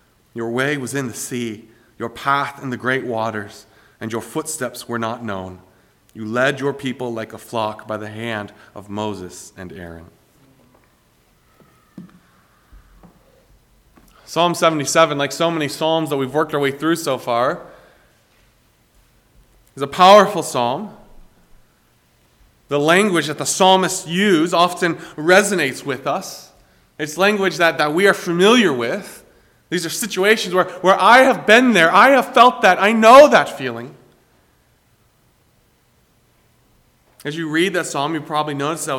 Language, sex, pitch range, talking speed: English, male, 125-180 Hz, 145 wpm